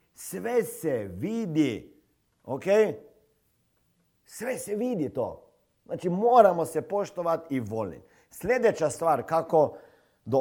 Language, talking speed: Croatian, 105 wpm